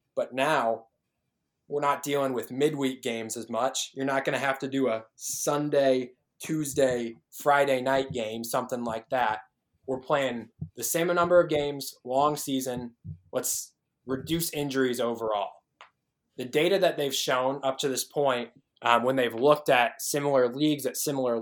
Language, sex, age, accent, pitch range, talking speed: English, male, 20-39, American, 120-145 Hz, 160 wpm